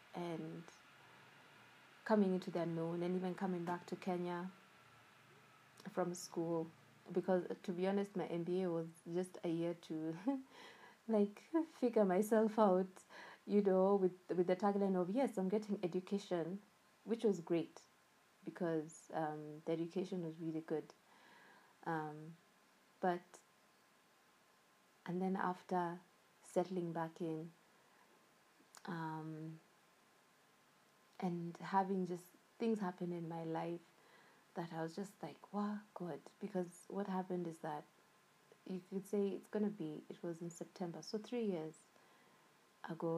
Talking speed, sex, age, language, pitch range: 130 wpm, female, 20-39, English, 165-195 Hz